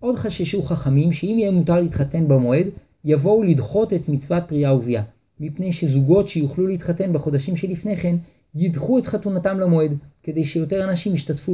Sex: male